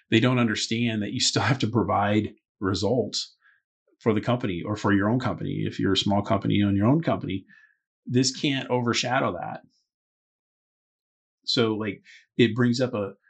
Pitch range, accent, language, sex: 105-125 Hz, American, English, male